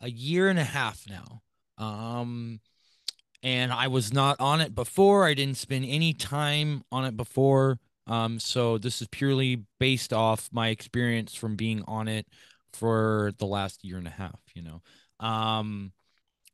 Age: 30-49